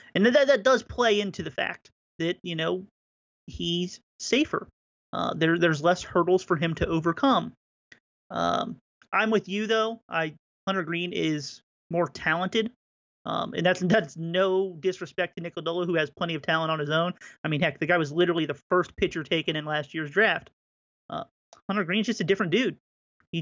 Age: 30-49